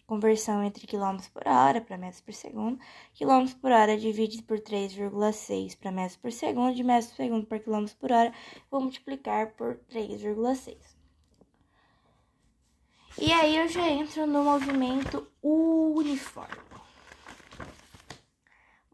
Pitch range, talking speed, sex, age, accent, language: 205-260 Hz, 125 wpm, female, 10-29, Brazilian, Portuguese